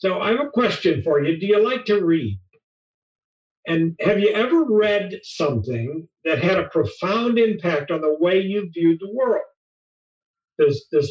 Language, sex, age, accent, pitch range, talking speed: English, male, 50-69, American, 165-210 Hz, 175 wpm